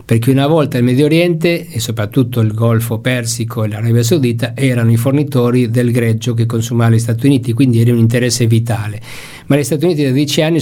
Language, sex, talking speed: Italian, male, 205 wpm